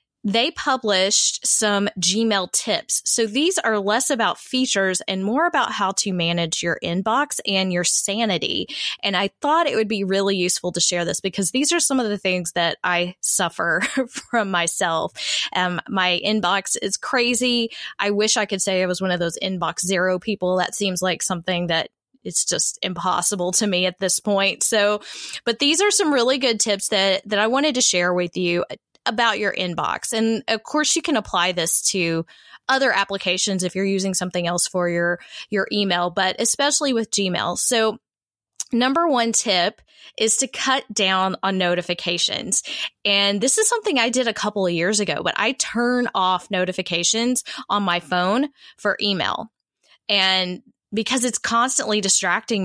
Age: 20-39